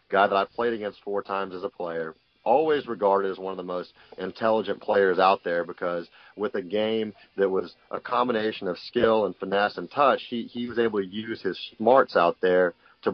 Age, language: 30-49, English